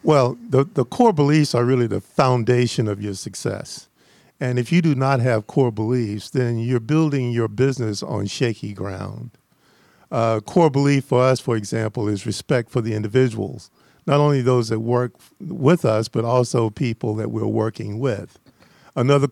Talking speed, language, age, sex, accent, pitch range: 175 wpm, English, 50-69, male, American, 115-140 Hz